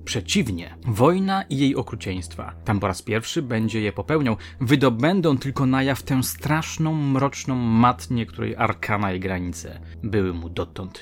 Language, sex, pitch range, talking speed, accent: Polish, male, 95-135 Hz, 140 wpm, native